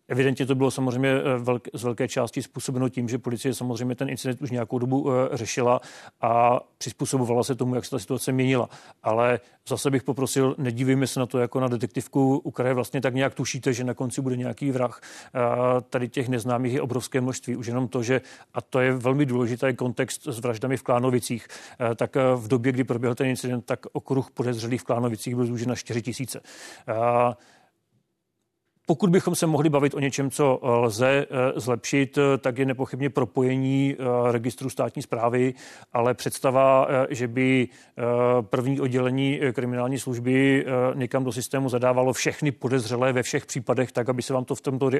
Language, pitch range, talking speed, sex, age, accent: Czech, 125-135 Hz, 170 wpm, male, 40-59, native